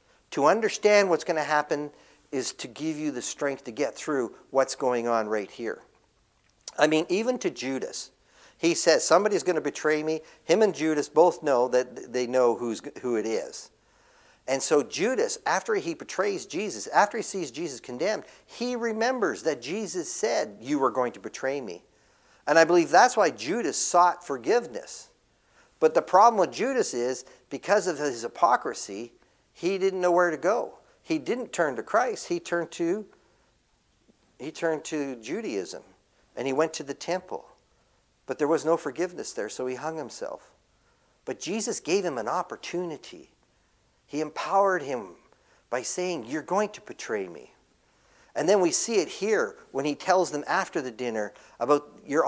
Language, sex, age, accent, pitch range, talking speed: English, male, 50-69, American, 145-210 Hz, 170 wpm